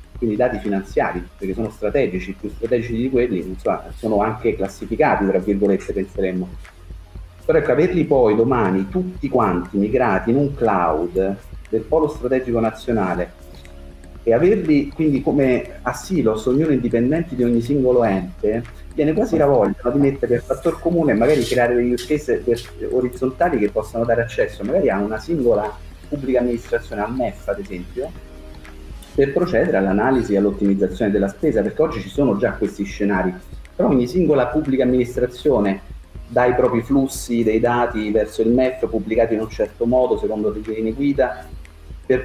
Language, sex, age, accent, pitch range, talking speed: Italian, male, 30-49, native, 95-130 Hz, 160 wpm